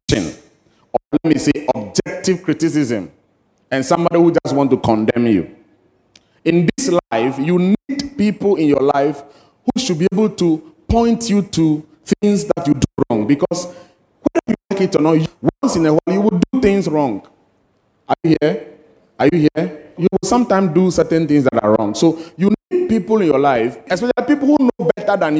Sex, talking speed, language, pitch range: male, 190 wpm, English, 125-180 Hz